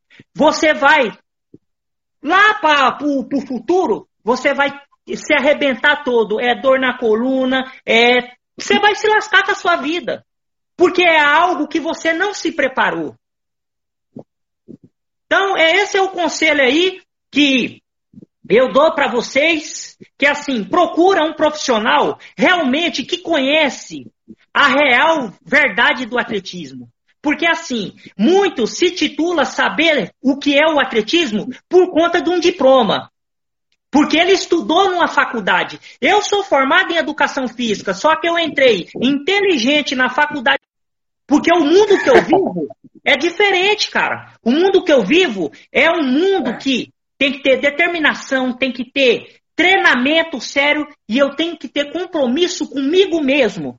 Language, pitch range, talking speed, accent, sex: Portuguese, 260-340 Hz, 140 wpm, Brazilian, male